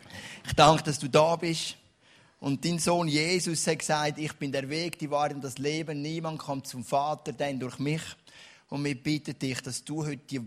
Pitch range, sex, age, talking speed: 140-175 Hz, male, 30-49, 200 wpm